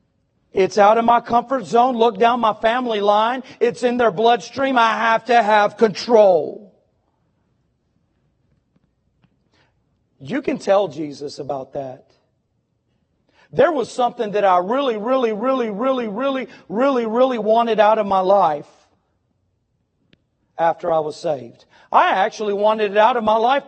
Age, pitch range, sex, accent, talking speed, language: 40-59, 150-235 Hz, male, American, 140 wpm, English